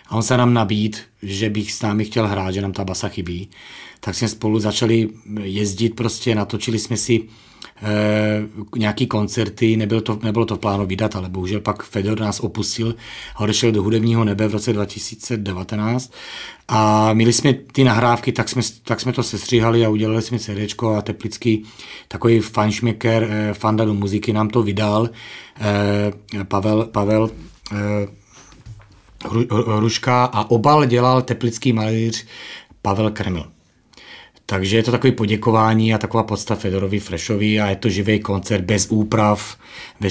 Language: Czech